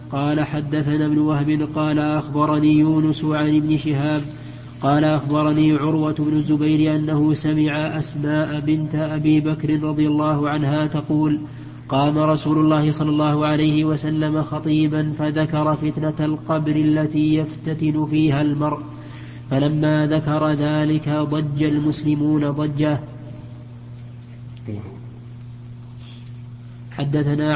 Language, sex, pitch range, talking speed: Arabic, male, 150-155 Hz, 100 wpm